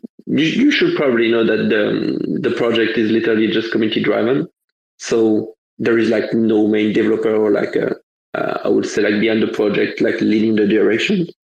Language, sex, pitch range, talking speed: English, male, 110-125 Hz, 185 wpm